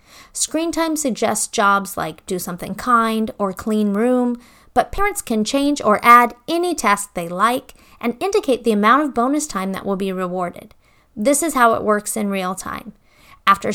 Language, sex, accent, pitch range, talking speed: English, female, American, 210-265 Hz, 180 wpm